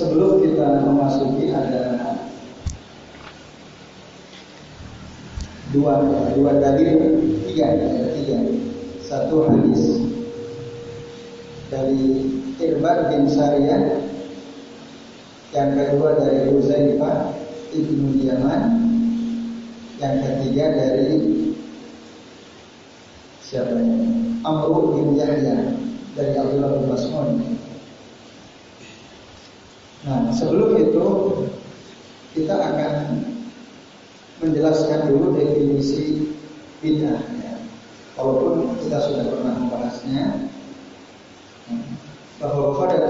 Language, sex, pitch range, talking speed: Indonesian, male, 140-230 Hz, 65 wpm